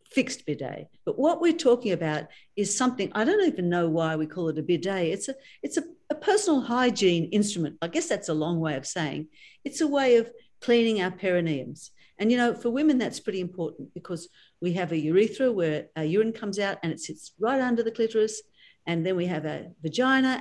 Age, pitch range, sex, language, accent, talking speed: 50-69, 170-240 Hz, female, English, Australian, 215 wpm